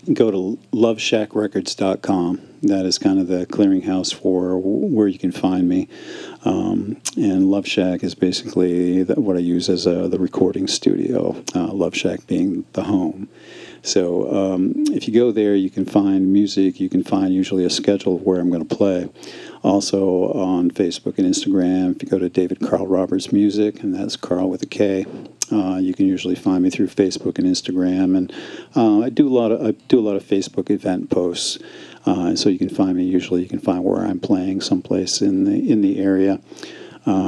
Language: English